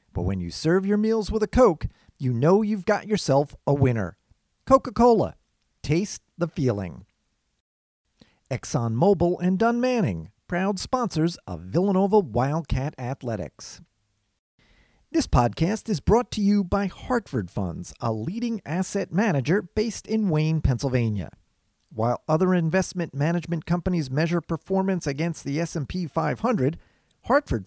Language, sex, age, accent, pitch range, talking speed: English, male, 40-59, American, 115-190 Hz, 130 wpm